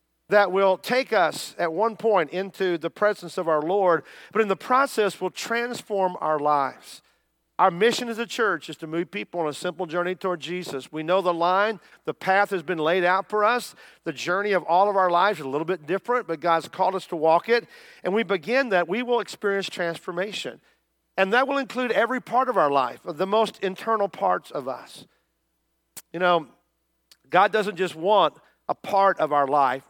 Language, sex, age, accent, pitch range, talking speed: English, male, 50-69, American, 165-215 Hz, 205 wpm